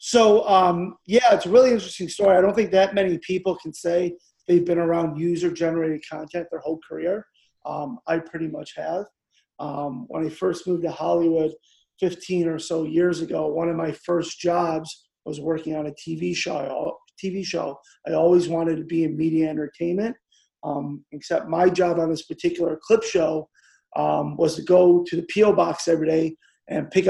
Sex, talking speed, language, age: male, 185 wpm, English, 30-49